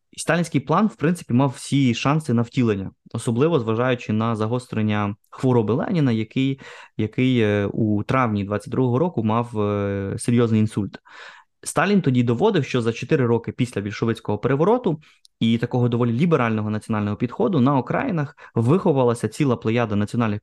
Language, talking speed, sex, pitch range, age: Ukrainian, 135 wpm, male, 115-140 Hz, 20-39